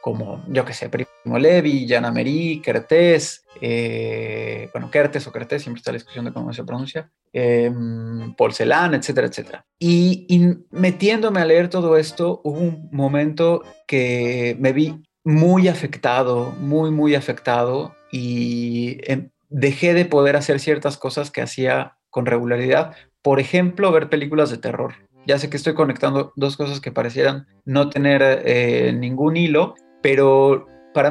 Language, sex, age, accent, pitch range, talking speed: Spanish, male, 30-49, Mexican, 125-160 Hz, 150 wpm